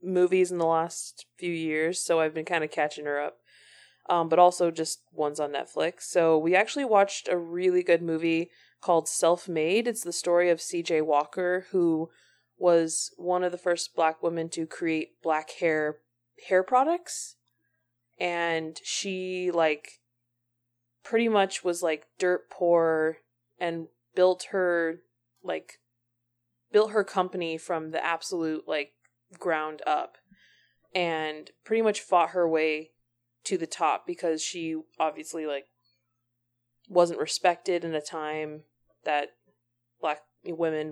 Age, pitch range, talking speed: 20-39, 150-175 Hz, 140 wpm